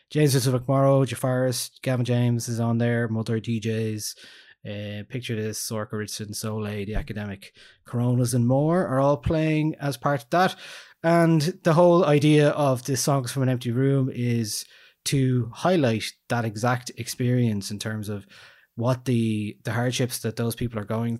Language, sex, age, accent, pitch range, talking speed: English, male, 20-39, Irish, 105-130 Hz, 165 wpm